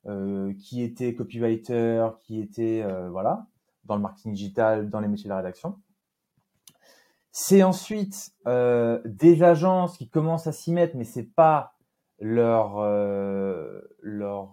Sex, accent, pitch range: male, French, 110-165 Hz